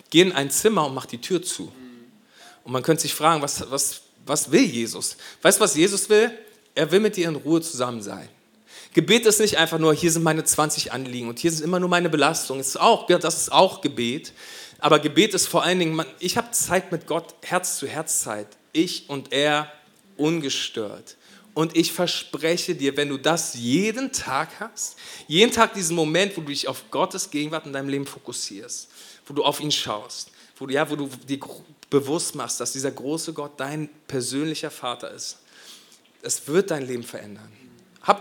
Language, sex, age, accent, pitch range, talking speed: German, male, 40-59, German, 135-170 Hz, 195 wpm